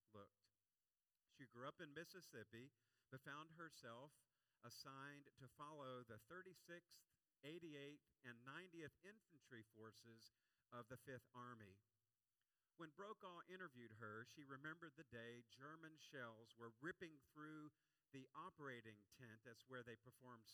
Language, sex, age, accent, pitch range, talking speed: English, male, 50-69, American, 115-150 Hz, 125 wpm